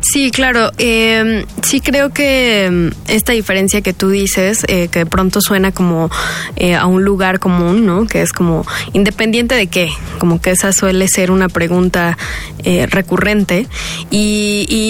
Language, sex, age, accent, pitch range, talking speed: Spanish, female, 20-39, Mexican, 175-200 Hz, 160 wpm